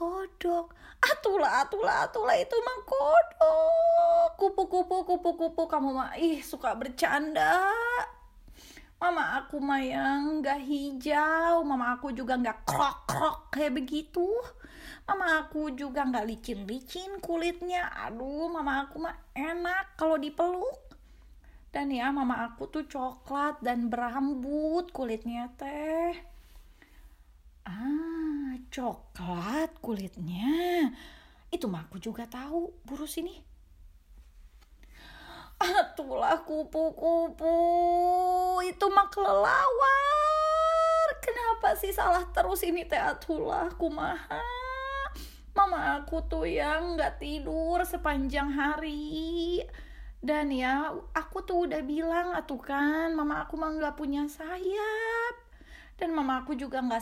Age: 20-39